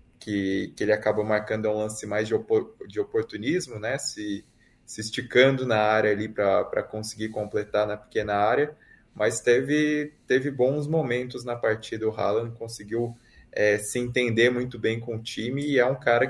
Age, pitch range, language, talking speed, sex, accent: 20-39, 105-130 Hz, Portuguese, 175 wpm, male, Brazilian